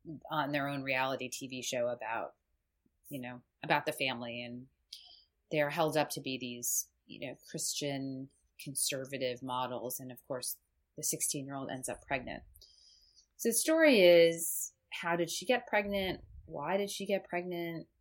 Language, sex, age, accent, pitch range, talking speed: English, female, 30-49, American, 125-165 Hz, 155 wpm